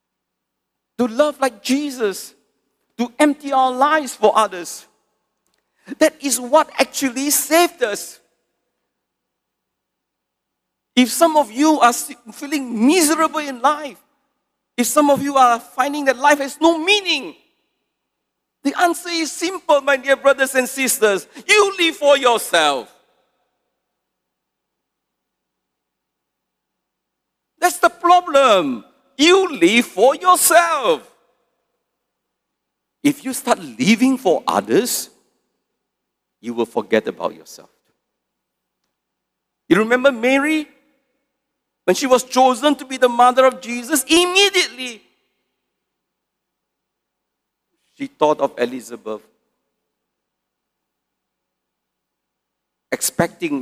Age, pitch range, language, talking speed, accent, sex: 50-69, 245-300 Hz, English, 95 wpm, Malaysian, male